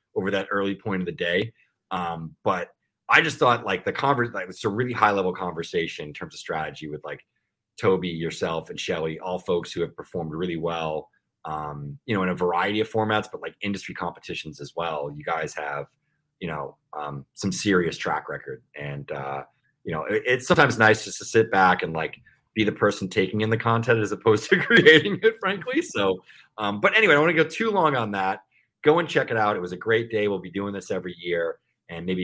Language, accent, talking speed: English, American, 225 wpm